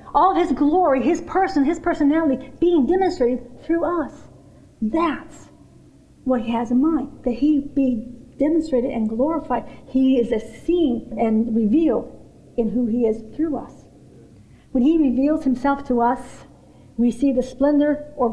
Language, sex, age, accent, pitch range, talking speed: English, female, 50-69, American, 235-325 Hz, 150 wpm